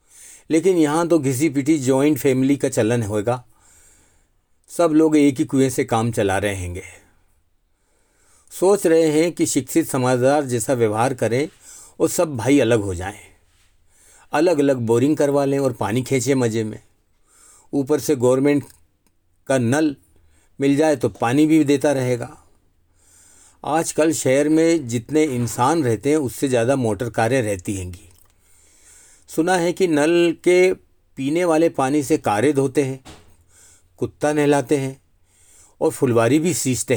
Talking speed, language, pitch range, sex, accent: 145 wpm, Hindi, 90-150 Hz, male, native